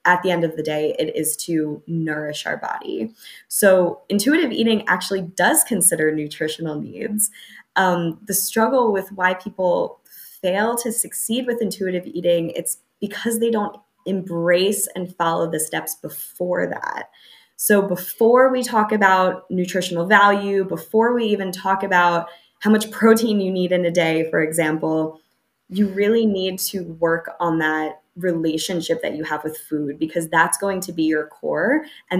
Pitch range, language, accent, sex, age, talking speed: 165-200 Hz, English, American, female, 20-39, 160 wpm